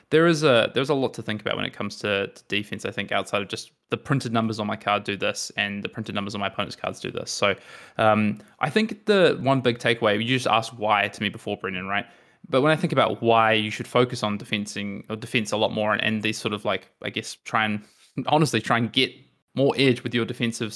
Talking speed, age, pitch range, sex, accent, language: 260 wpm, 20-39, 105-125 Hz, male, Australian, English